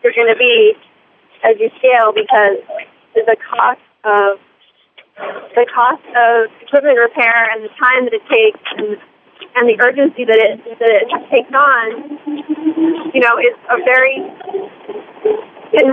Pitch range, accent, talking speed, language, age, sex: 230-365 Hz, American, 145 wpm, English, 30-49, female